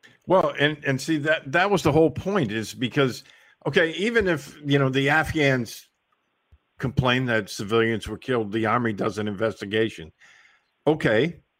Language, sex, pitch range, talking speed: English, male, 115-140 Hz, 155 wpm